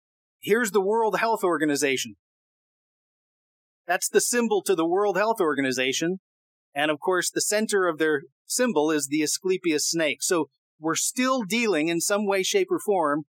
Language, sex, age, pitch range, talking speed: English, male, 30-49, 165-230 Hz, 155 wpm